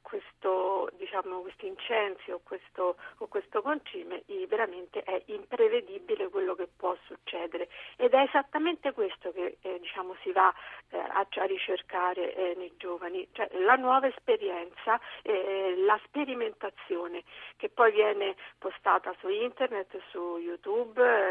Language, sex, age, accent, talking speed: Italian, female, 50-69, native, 130 wpm